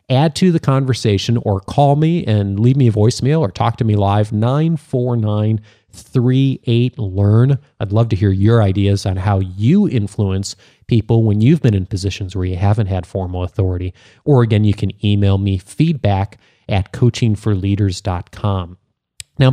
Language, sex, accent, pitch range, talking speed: English, male, American, 100-130 Hz, 155 wpm